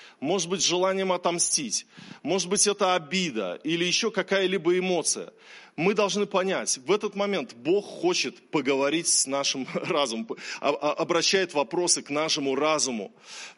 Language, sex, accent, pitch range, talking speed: Russian, male, native, 155-210 Hz, 130 wpm